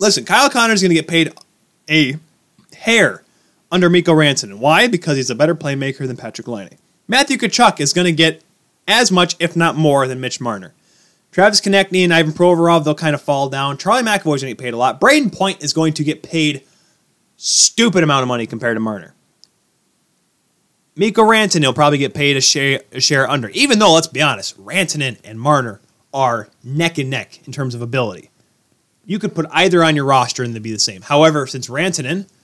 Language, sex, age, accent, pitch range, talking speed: English, male, 20-39, American, 130-180 Hz, 205 wpm